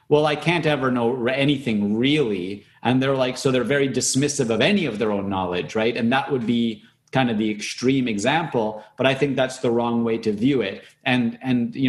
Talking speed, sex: 215 wpm, male